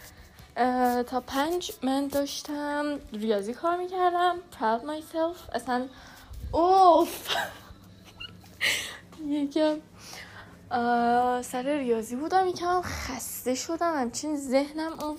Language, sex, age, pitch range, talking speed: Persian, female, 10-29, 245-330 Hz, 75 wpm